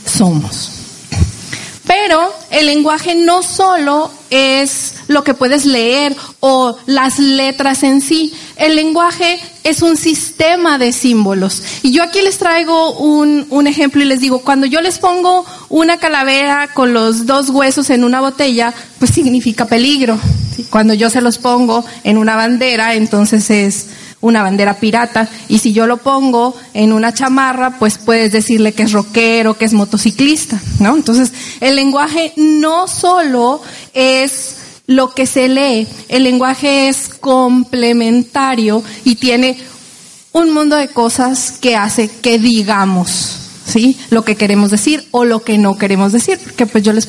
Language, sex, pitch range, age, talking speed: Spanish, female, 225-285 Hz, 30-49, 155 wpm